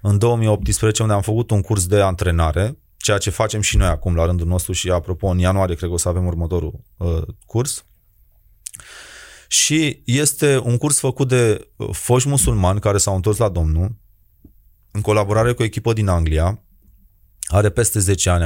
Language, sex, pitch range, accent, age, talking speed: Romanian, male, 95-120 Hz, native, 30-49, 170 wpm